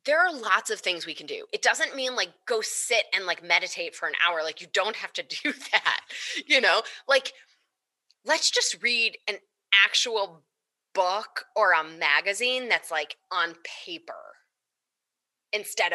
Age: 20-39